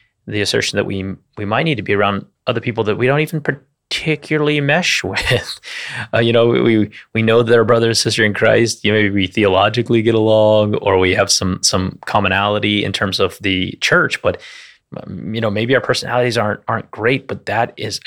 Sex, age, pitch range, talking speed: male, 30-49, 100-130 Hz, 210 wpm